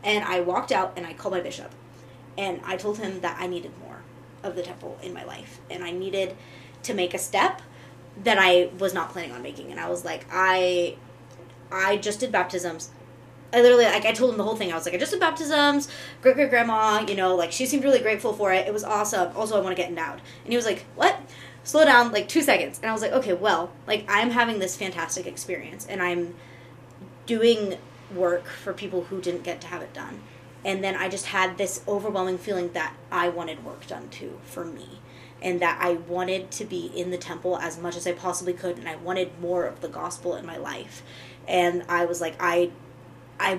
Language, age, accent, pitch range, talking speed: English, 20-39, American, 175-210 Hz, 225 wpm